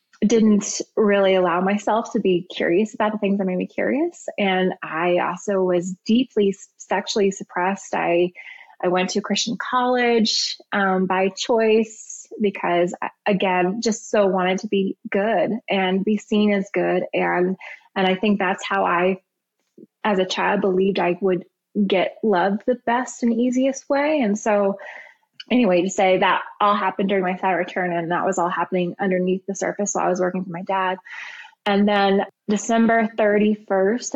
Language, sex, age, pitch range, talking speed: English, female, 20-39, 185-215 Hz, 165 wpm